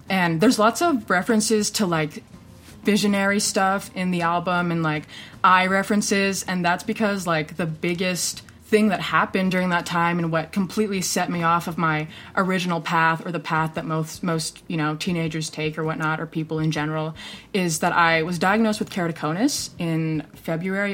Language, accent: English, American